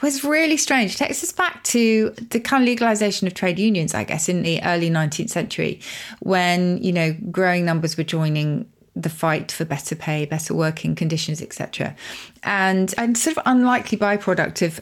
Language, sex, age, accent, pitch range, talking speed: English, female, 30-49, British, 165-220 Hz, 180 wpm